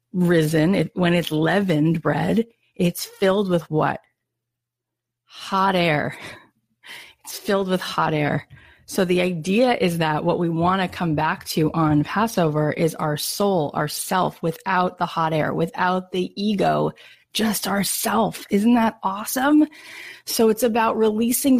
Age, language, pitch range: 30-49, English, 165-215 Hz